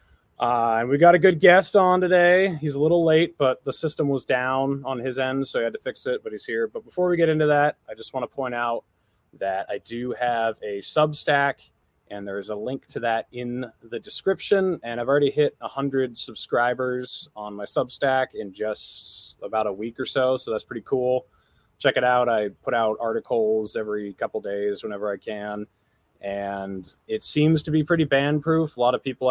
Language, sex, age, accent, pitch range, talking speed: English, male, 20-39, American, 110-150 Hz, 210 wpm